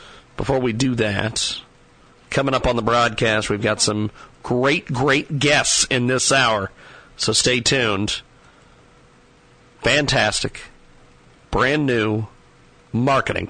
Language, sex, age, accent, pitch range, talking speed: English, male, 40-59, American, 115-160 Hz, 110 wpm